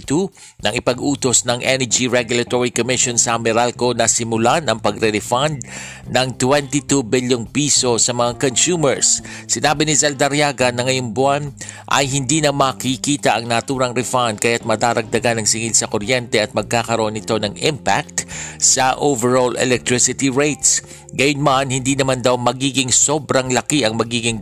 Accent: native